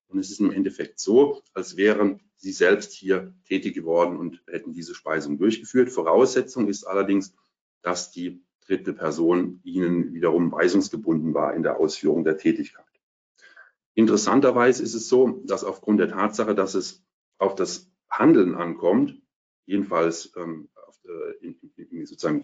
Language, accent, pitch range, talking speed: German, German, 100-140 Hz, 135 wpm